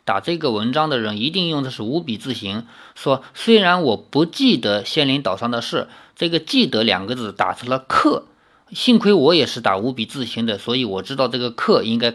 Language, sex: Chinese, male